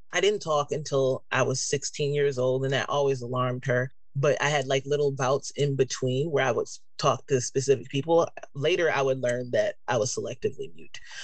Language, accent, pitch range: English, American, 130-150 Hz